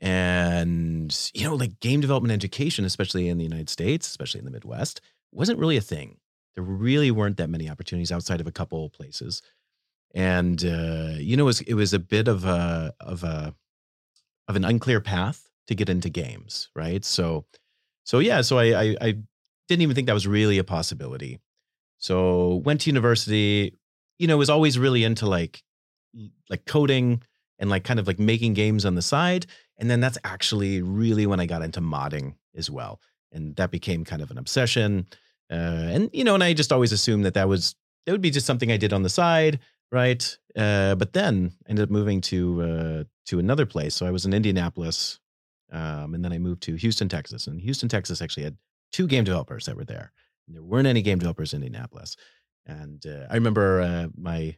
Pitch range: 85-120 Hz